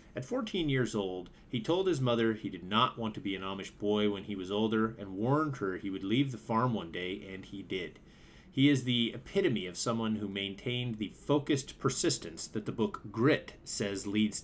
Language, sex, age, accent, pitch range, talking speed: English, male, 30-49, American, 105-130 Hz, 210 wpm